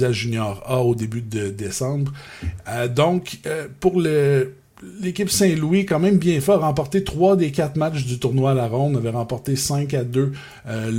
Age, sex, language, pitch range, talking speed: 50-69, male, French, 125-155 Hz, 180 wpm